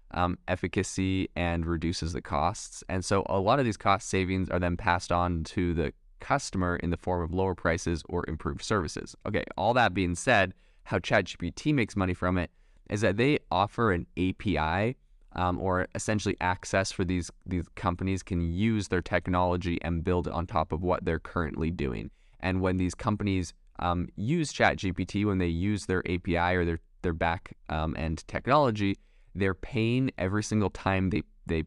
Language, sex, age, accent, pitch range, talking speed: English, male, 20-39, American, 85-100 Hz, 180 wpm